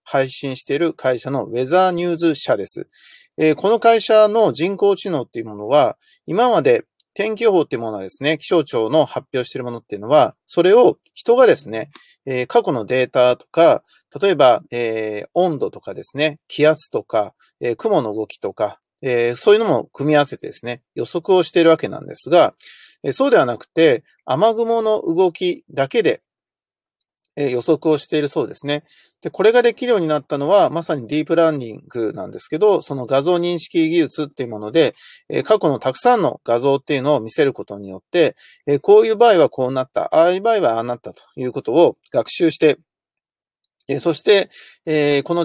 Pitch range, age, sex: 135-215 Hz, 40-59, male